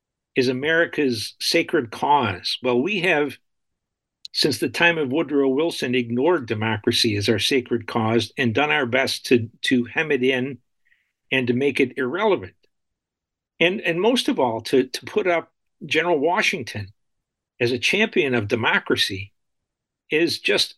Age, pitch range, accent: 50-69, 120-170 Hz, American